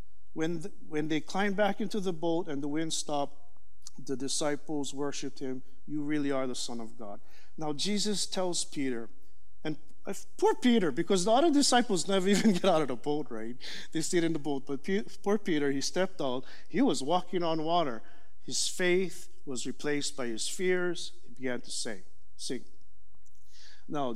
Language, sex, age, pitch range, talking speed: English, male, 50-69, 110-175 Hz, 180 wpm